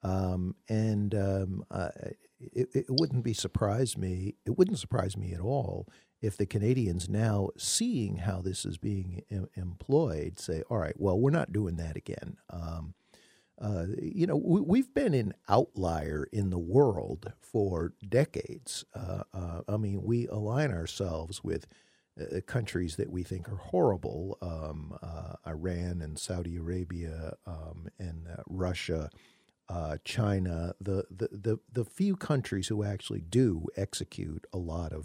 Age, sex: 50-69, male